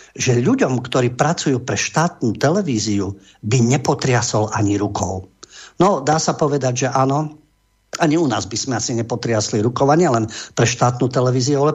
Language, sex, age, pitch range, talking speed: English, male, 50-69, 115-150 Hz, 165 wpm